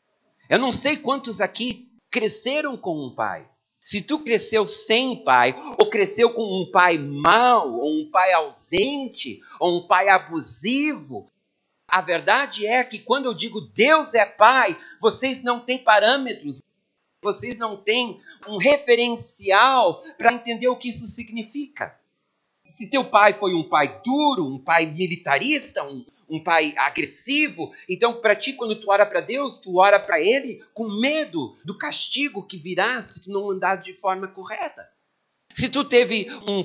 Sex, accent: male, Brazilian